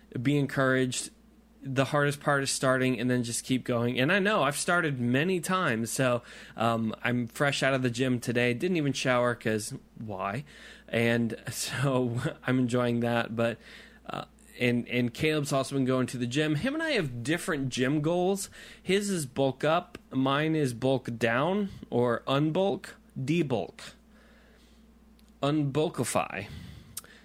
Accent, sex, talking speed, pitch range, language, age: American, male, 150 wpm, 120-150 Hz, English, 20-39